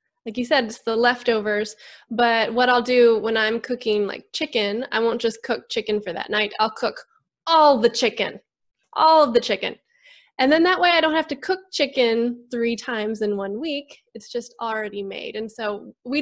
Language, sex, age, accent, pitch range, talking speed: English, female, 20-39, American, 215-265 Hz, 200 wpm